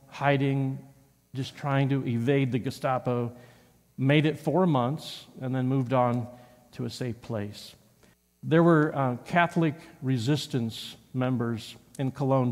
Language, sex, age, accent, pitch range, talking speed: English, male, 50-69, American, 125-155 Hz, 130 wpm